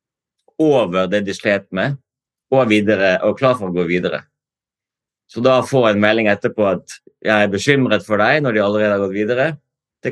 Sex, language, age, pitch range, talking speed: male, Danish, 30-49, 95-125 Hz, 250 wpm